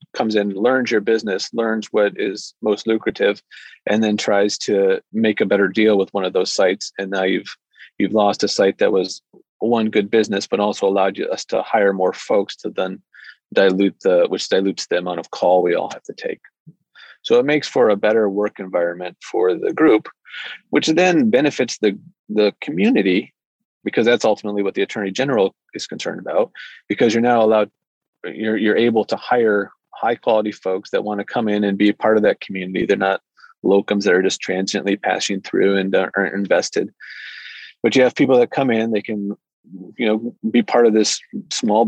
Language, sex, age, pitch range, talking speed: English, male, 30-49, 100-120 Hz, 200 wpm